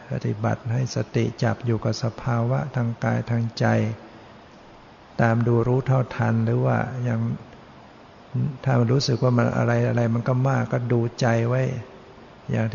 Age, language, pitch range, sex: 60-79, Thai, 115-130 Hz, male